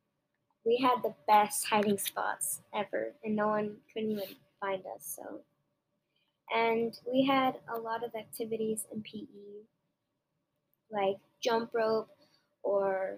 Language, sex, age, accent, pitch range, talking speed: English, female, 10-29, American, 195-240 Hz, 125 wpm